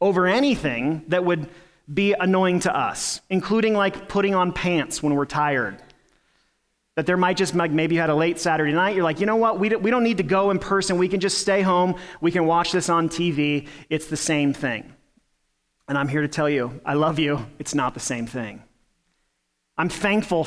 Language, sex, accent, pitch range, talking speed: English, male, American, 145-180 Hz, 210 wpm